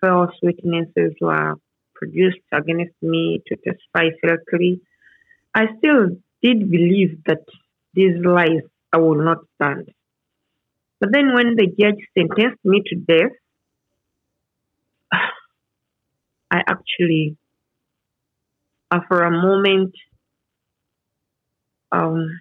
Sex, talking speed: female, 95 wpm